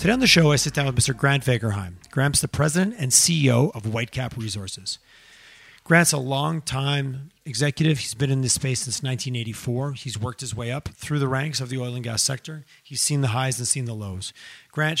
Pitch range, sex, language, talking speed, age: 120-150 Hz, male, English, 210 wpm, 30-49